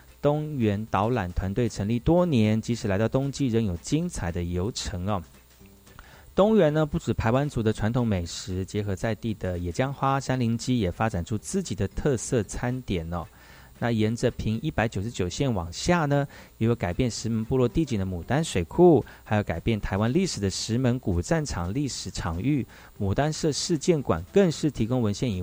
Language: Chinese